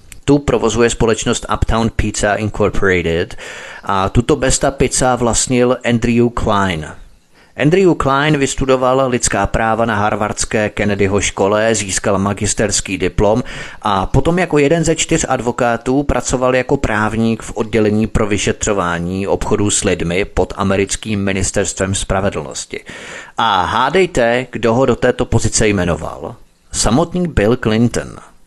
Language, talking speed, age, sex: Czech, 120 wpm, 30-49, male